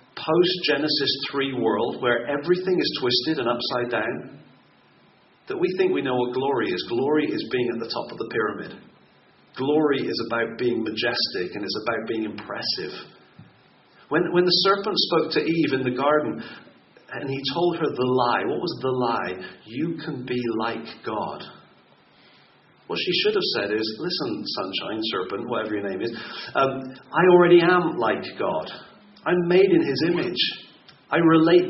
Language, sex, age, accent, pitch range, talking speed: English, male, 40-59, British, 120-160 Hz, 165 wpm